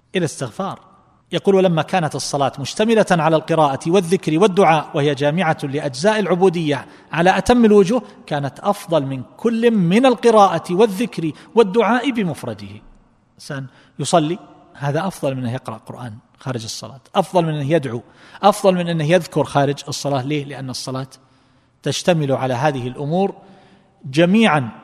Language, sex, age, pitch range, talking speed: Arabic, male, 40-59, 130-170 Hz, 130 wpm